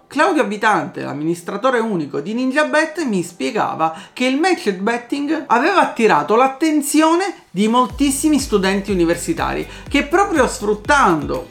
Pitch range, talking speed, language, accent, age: 185-275 Hz, 115 wpm, Italian, native, 40-59